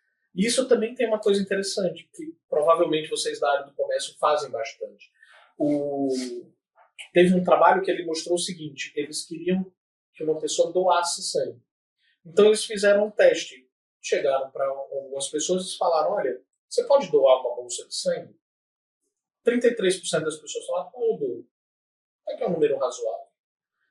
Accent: Brazilian